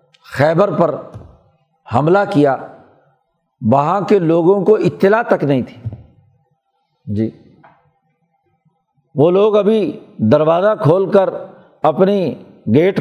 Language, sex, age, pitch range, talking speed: Urdu, male, 50-69, 150-190 Hz, 95 wpm